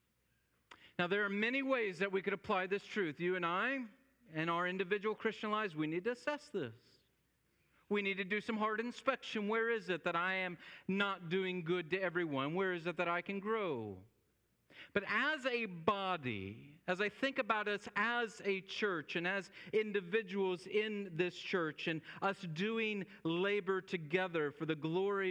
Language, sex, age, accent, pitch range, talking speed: English, male, 40-59, American, 130-195 Hz, 180 wpm